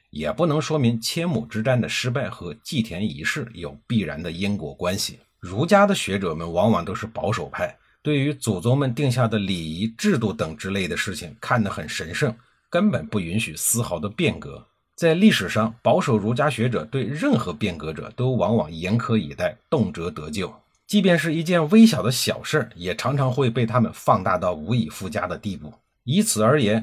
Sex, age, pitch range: male, 50-69, 110-155 Hz